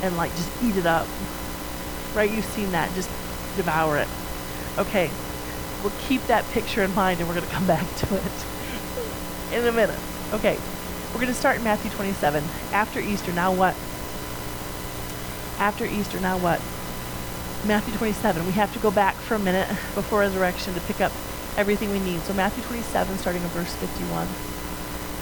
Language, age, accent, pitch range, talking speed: English, 30-49, American, 150-220 Hz, 170 wpm